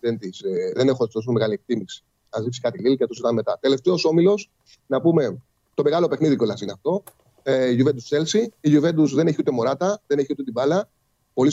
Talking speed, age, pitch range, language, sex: 215 wpm, 30-49, 125-160 Hz, Greek, male